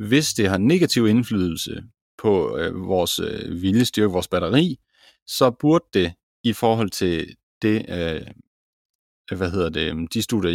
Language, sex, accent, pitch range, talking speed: Danish, male, native, 90-115 Hz, 140 wpm